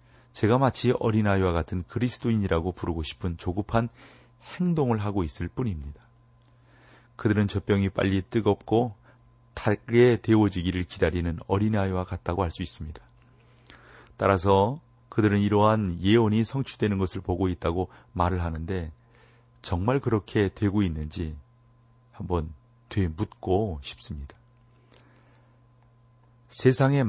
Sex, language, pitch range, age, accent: male, Korean, 85-120 Hz, 40-59, native